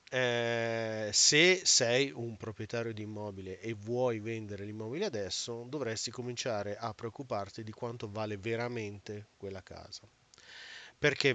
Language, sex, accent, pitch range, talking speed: Italian, male, native, 105-130 Hz, 120 wpm